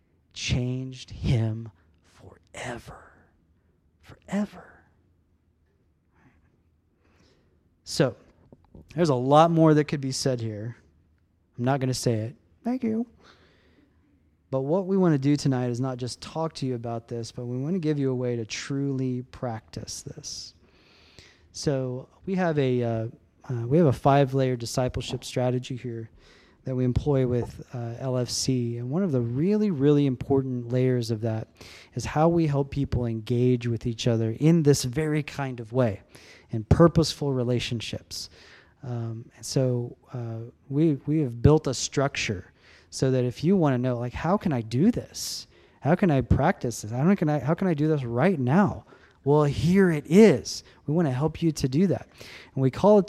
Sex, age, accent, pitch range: male, 30-49, American, 115-150 Hz